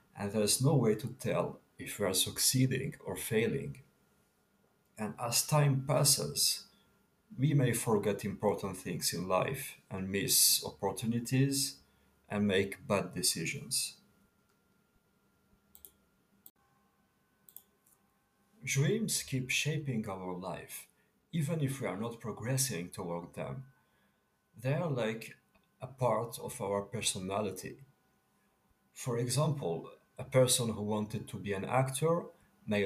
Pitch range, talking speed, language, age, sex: 105-135 Hz, 115 wpm, English, 50-69, male